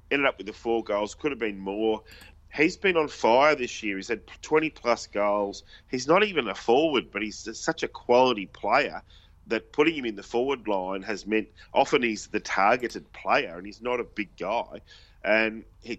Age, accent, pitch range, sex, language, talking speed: 30-49, Australian, 100-120 Hz, male, English, 200 wpm